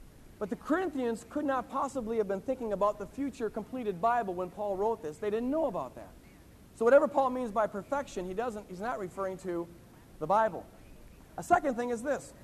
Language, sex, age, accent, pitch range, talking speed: English, male, 50-69, American, 205-275 Hz, 205 wpm